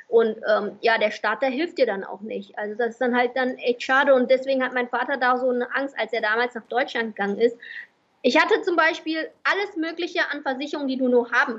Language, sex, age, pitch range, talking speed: German, female, 20-39, 235-280 Hz, 245 wpm